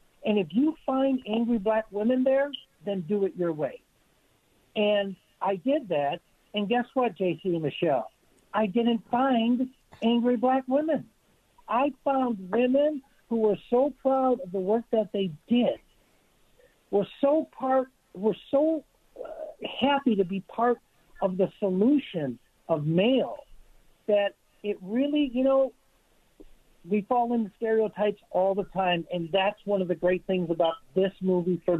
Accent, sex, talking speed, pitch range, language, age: American, male, 150 wpm, 175-245 Hz, English, 60-79